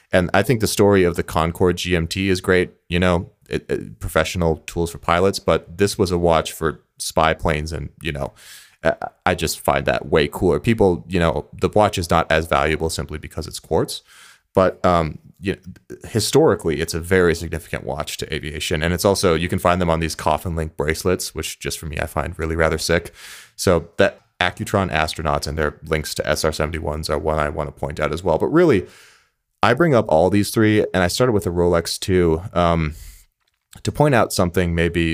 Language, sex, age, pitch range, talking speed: English, male, 30-49, 80-95 Hz, 205 wpm